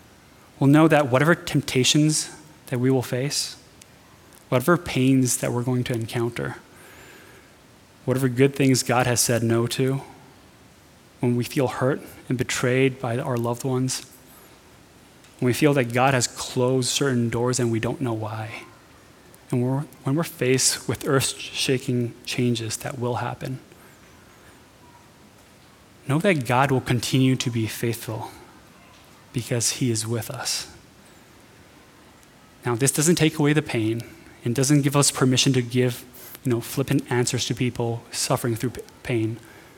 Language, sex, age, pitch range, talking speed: English, male, 20-39, 120-135 Hz, 140 wpm